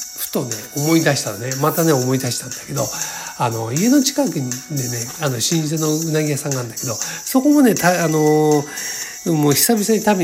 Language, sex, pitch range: Japanese, male, 125-170 Hz